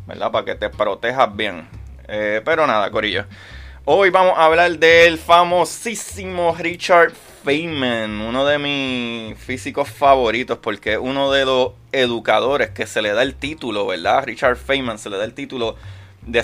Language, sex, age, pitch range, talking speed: Spanish, male, 20-39, 105-135 Hz, 155 wpm